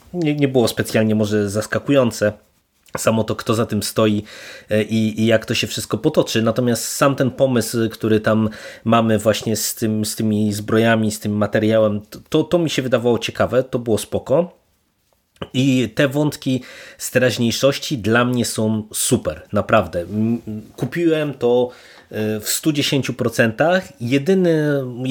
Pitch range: 110-130 Hz